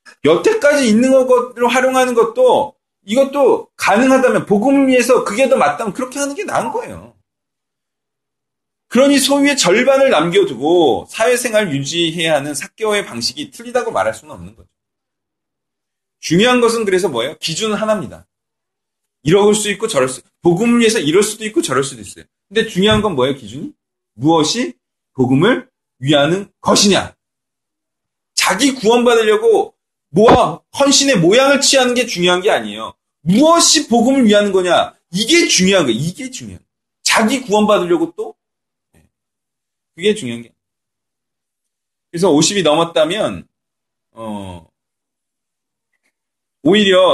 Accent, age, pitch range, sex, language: native, 40-59, 170-260 Hz, male, Korean